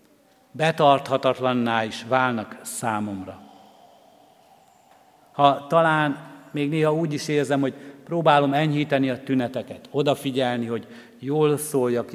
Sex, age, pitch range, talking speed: male, 60-79, 115-145 Hz, 100 wpm